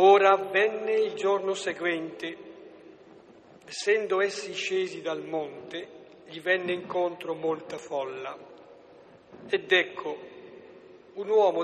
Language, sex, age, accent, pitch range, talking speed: Italian, male, 50-69, native, 165-205 Hz, 100 wpm